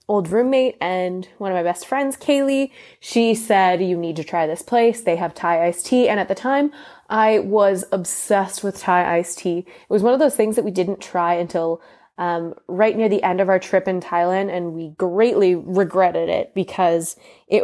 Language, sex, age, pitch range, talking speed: English, female, 20-39, 180-225 Hz, 210 wpm